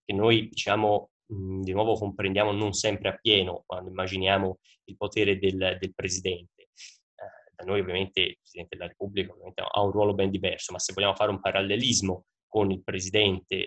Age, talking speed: 10-29, 170 wpm